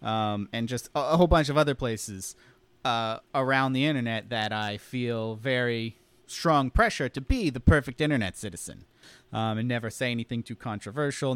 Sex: male